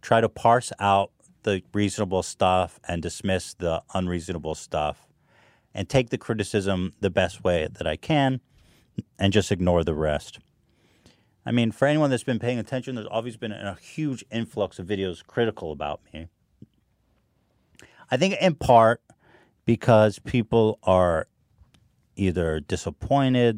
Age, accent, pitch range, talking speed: 40-59, American, 90-120 Hz, 140 wpm